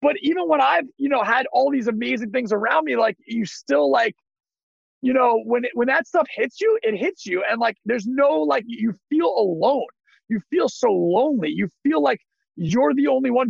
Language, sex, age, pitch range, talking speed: English, male, 40-59, 220-265 Hz, 210 wpm